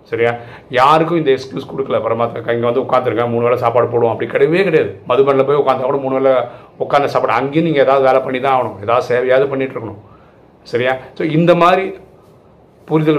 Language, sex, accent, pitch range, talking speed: Tamil, male, native, 115-150 Hz, 180 wpm